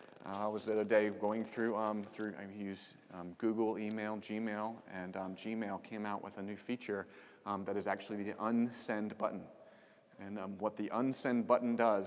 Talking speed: 190 wpm